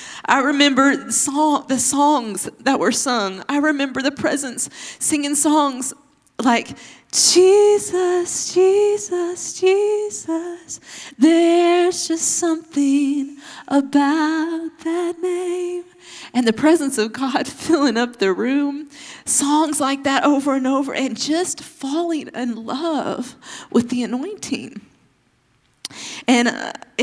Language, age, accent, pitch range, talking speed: English, 30-49, American, 225-305 Hz, 110 wpm